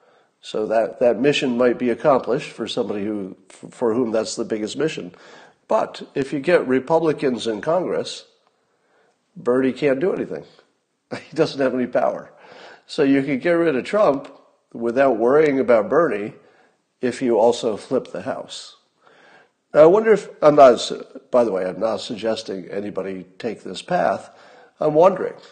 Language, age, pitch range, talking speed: English, 50-69, 115-155 Hz, 160 wpm